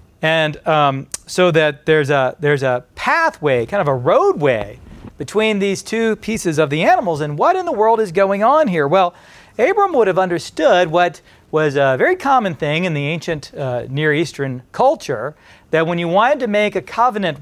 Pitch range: 140-195 Hz